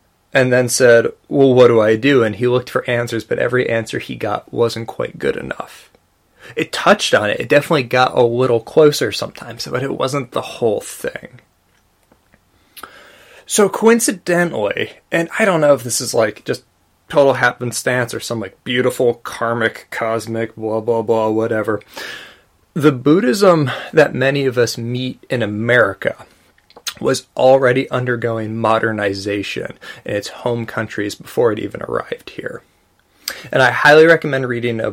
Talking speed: 155 wpm